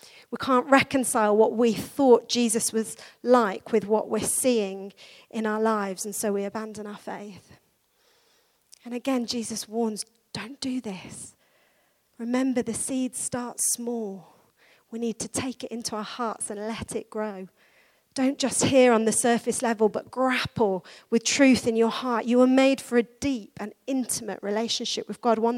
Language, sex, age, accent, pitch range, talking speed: English, female, 40-59, British, 220-255 Hz, 170 wpm